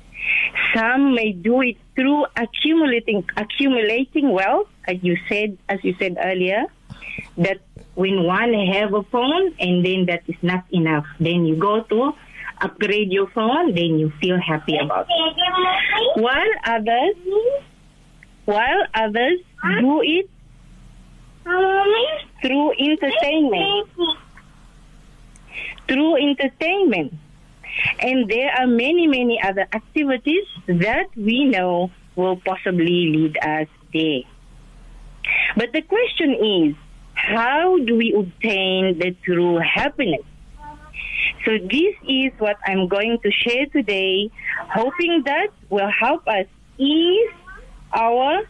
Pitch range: 185-295 Hz